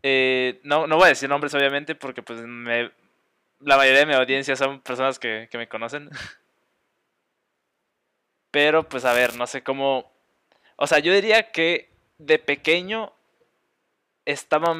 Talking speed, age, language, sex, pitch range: 145 wpm, 20-39, Spanish, male, 125-150 Hz